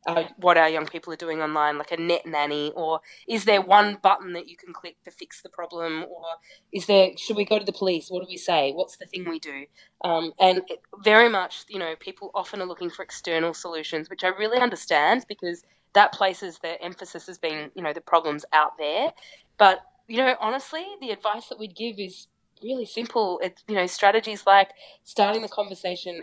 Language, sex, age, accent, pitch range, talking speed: English, female, 20-39, Australian, 170-210 Hz, 215 wpm